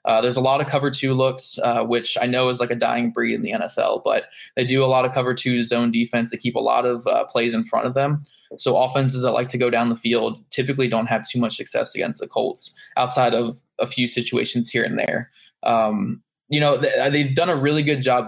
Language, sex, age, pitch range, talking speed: English, male, 20-39, 120-140 Hz, 255 wpm